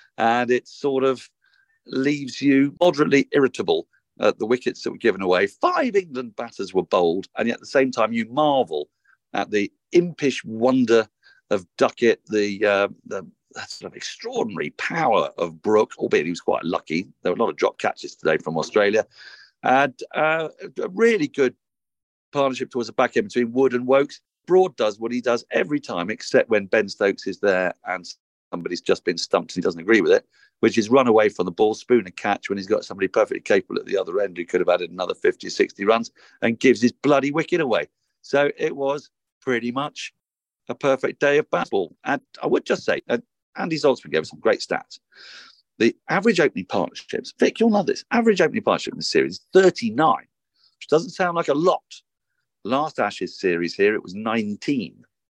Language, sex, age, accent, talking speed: English, male, 50-69, British, 200 wpm